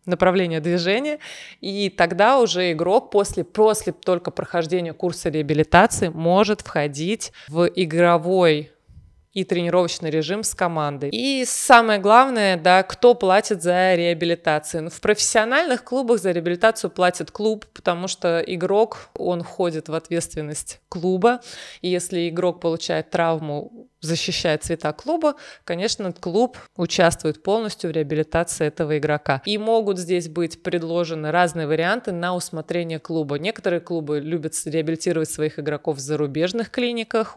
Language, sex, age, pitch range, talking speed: Russian, female, 20-39, 160-200 Hz, 125 wpm